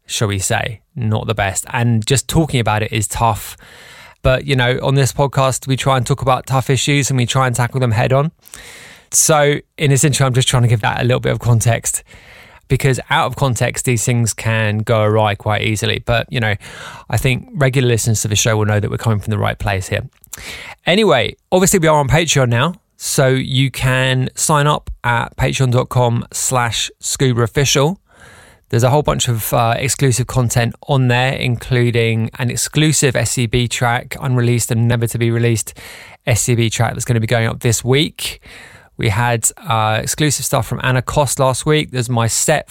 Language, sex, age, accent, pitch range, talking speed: English, male, 20-39, British, 115-140 Hz, 195 wpm